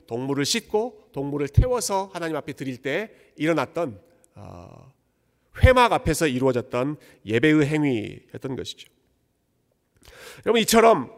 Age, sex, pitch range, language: 40-59, male, 130-205 Hz, Korean